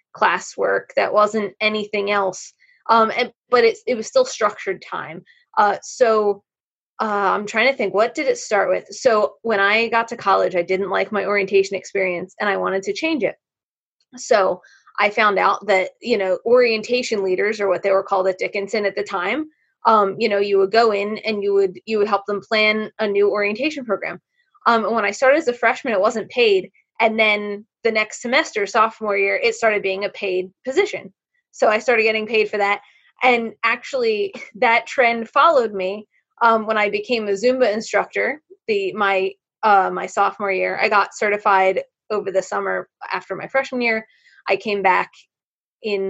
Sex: female